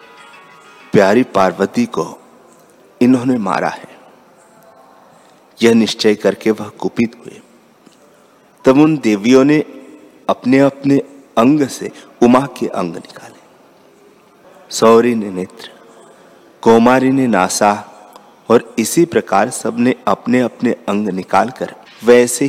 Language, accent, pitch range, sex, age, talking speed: Hindi, native, 105-130 Hz, male, 50-69, 105 wpm